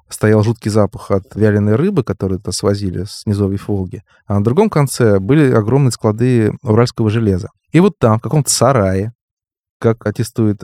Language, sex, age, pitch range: Russian, male, 20-39, 100-125 Hz